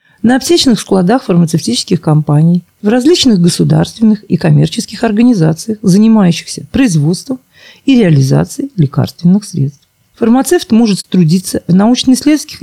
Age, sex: 40-59, female